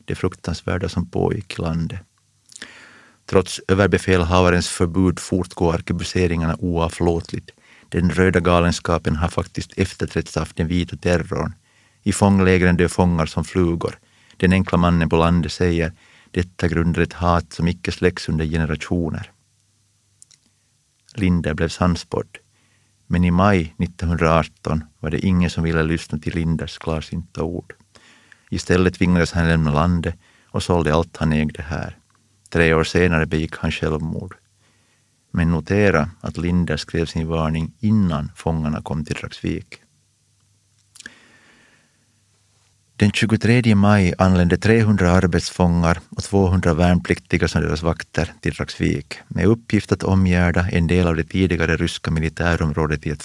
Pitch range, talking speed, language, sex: 80-100 Hz, 130 wpm, Swedish, male